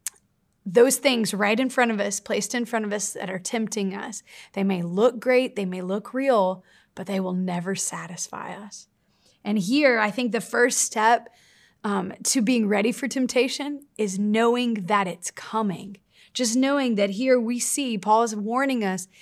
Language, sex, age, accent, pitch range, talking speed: English, female, 30-49, American, 195-245 Hz, 180 wpm